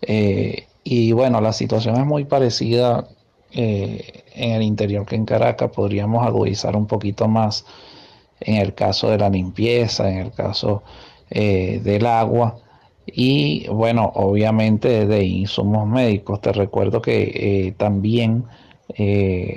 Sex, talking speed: male, 135 wpm